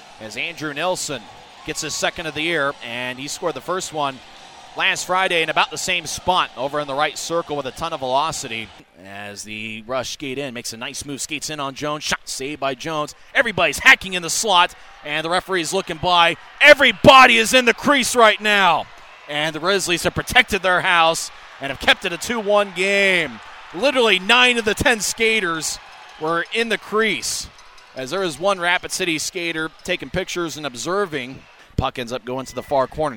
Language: English